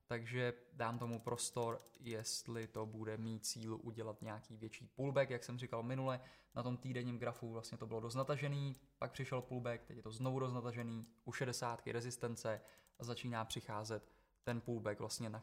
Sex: male